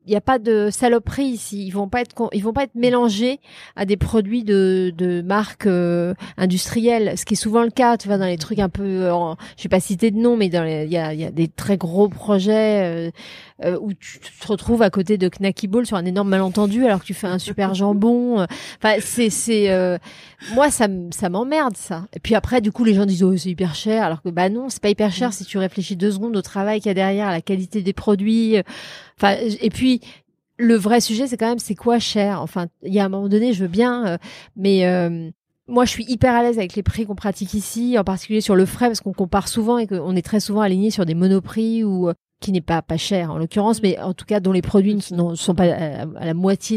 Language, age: French, 30-49